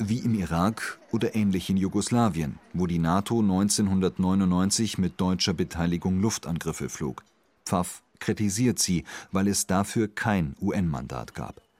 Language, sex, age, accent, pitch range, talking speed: German, male, 40-59, German, 90-110 Hz, 125 wpm